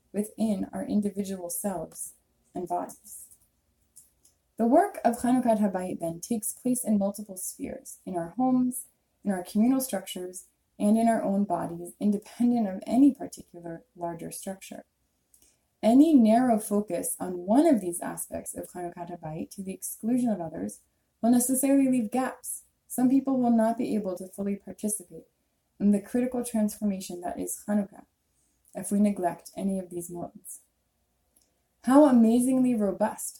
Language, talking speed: English, 145 wpm